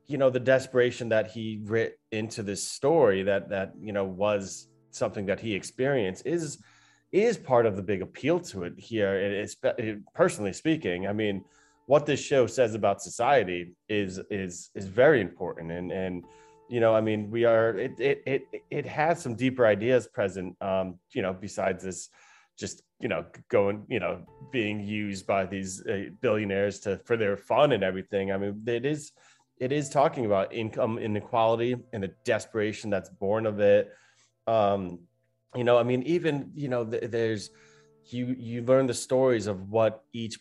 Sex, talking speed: male, 180 wpm